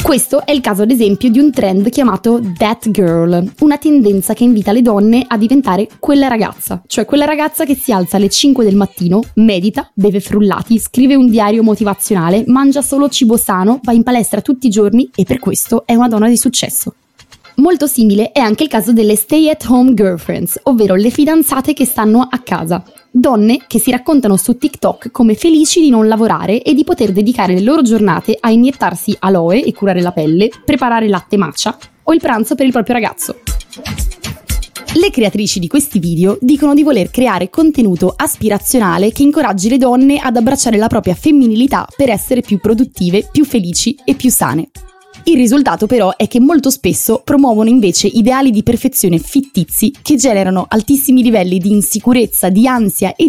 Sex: female